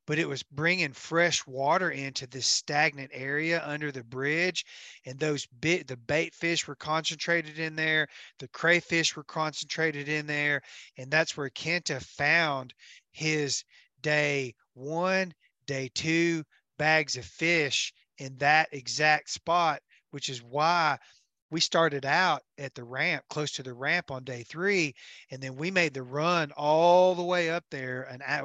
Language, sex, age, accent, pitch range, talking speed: English, male, 30-49, American, 130-160 Hz, 160 wpm